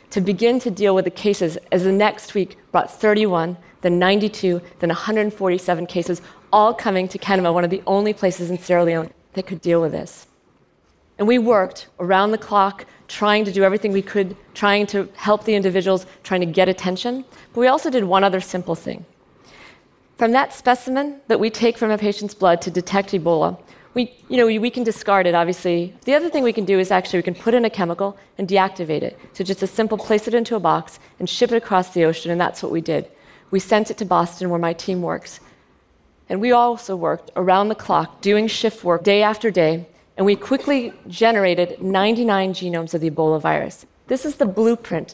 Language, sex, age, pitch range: Korean, female, 40-59, 180-220 Hz